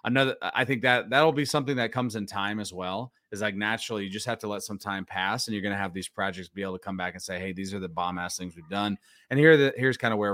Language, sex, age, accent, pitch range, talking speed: English, male, 30-49, American, 100-120 Hz, 315 wpm